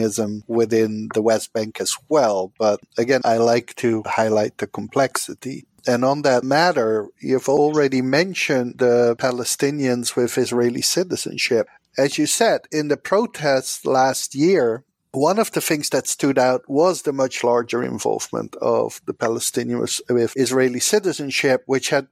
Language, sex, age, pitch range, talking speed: English, male, 50-69, 120-150 Hz, 145 wpm